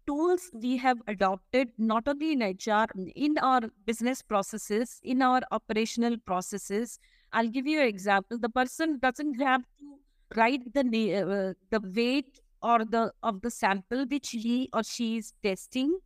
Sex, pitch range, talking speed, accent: female, 215-275 Hz, 155 wpm, Indian